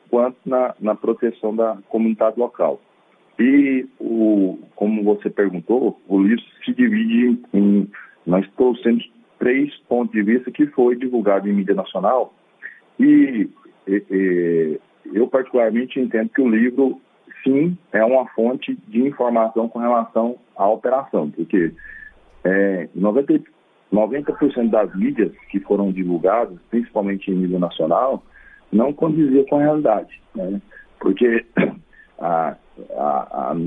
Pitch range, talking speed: 100-130 Hz, 125 wpm